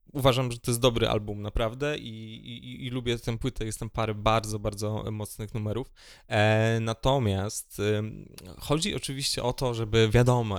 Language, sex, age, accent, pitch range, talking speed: Polish, male, 20-39, native, 105-130 Hz, 165 wpm